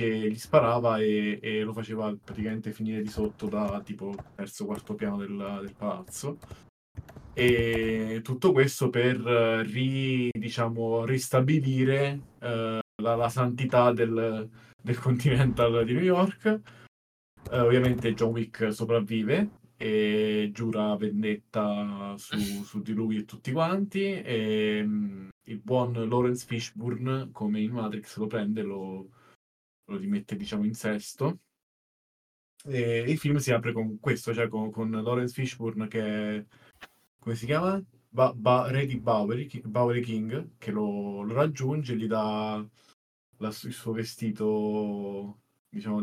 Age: 20-39